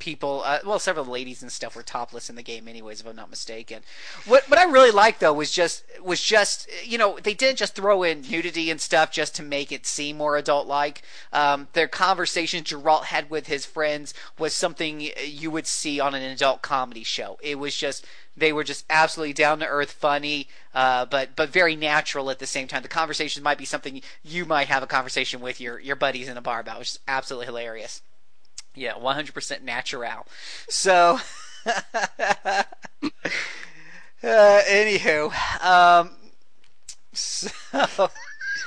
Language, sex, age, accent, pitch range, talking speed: English, male, 40-59, American, 140-175 Hz, 175 wpm